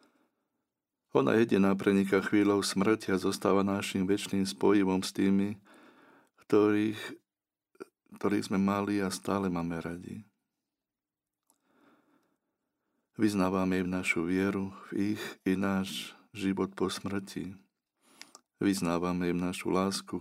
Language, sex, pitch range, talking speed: Slovak, male, 90-105 Hz, 105 wpm